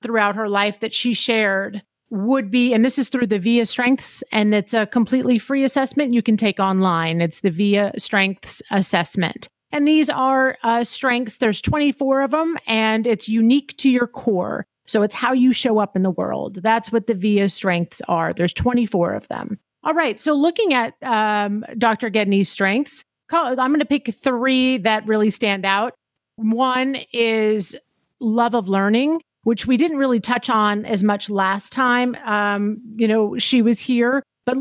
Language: English